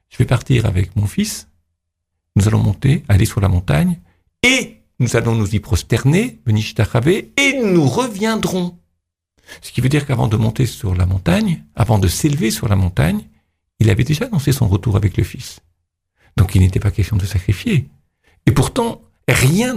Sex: male